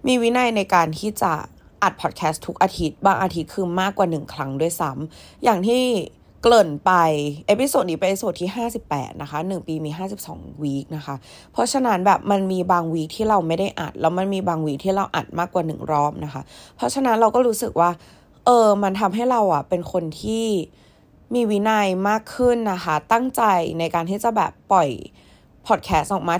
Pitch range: 160-210 Hz